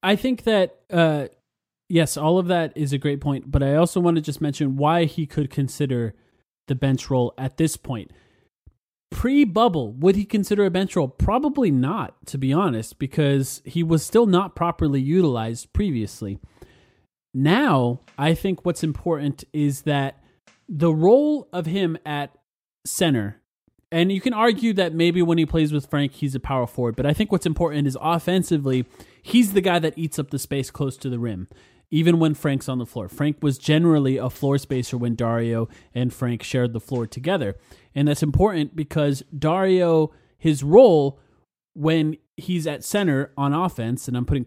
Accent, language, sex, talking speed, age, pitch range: American, English, male, 180 wpm, 30-49, 130-175 Hz